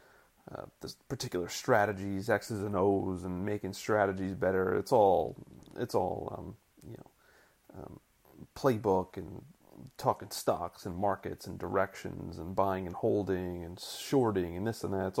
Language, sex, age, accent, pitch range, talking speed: English, male, 30-49, American, 95-110 Hz, 160 wpm